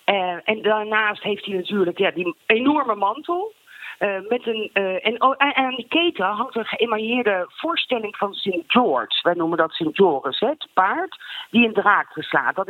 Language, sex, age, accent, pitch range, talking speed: Dutch, female, 40-59, Dutch, 175-245 Hz, 175 wpm